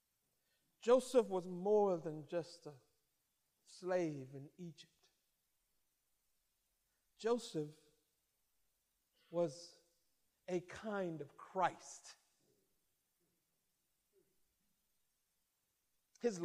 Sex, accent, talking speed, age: male, American, 60 wpm, 50-69